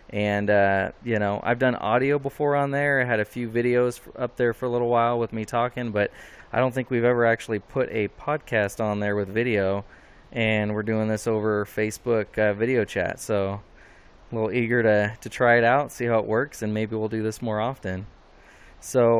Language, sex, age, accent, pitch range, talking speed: English, male, 20-39, American, 105-120 Hz, 215 wpm